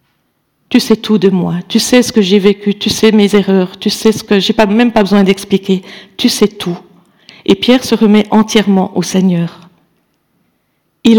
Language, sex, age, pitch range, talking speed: French, female, 50-69, 195-230 Hz, 195 wpm